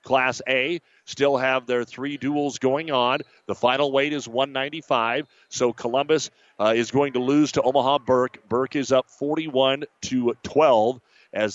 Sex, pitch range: male, 130-150 Hz